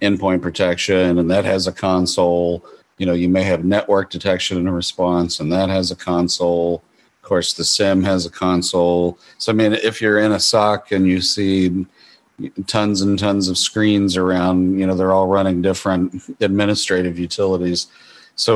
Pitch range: 90-100 Hz